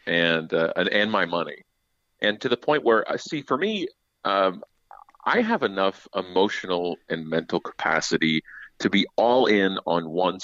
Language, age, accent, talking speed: English, 40-59, American, 165 wpm